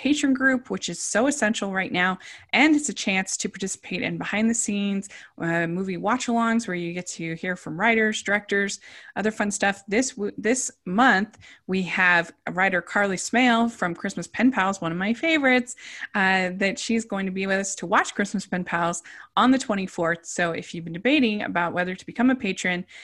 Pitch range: 175-230 Hz